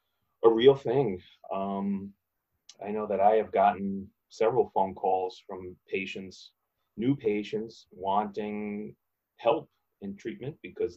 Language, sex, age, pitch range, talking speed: English, male, 30-49, 95-120 Hz, 120 wpm